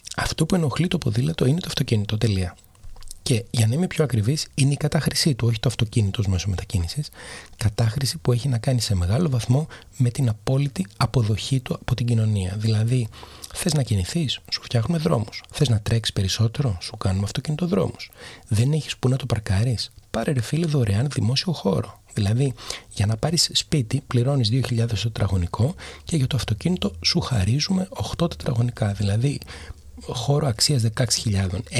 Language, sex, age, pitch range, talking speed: Greek, male, 30-49, 105-135 Hz, 165 wpm